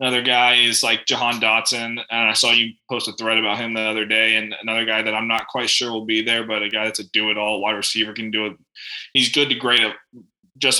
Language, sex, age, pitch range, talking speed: English, male, 20-39, 110-125 Hz, 255 wpm